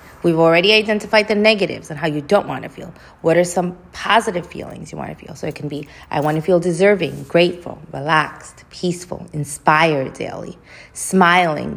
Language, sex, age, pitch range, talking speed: English, female, 30-49, 150-195 Hz, 185 wpm